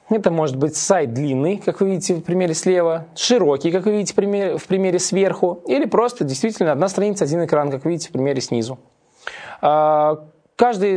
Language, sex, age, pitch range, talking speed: Russian, male, 20-39, 140-190 Hz, 175 wpm